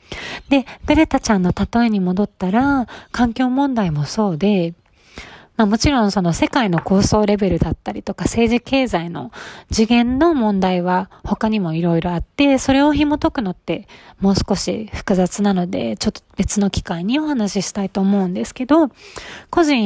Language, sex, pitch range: Japanese, female, 185-255 Hz